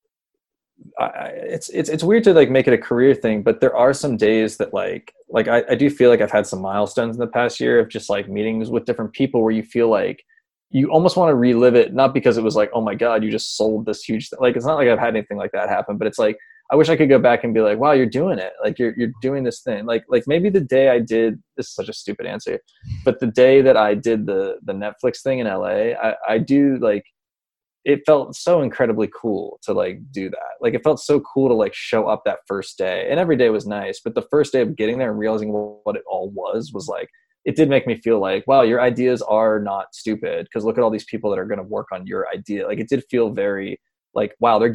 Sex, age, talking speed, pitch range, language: male, 20-39, 270 wpm, 110-155 Hz, English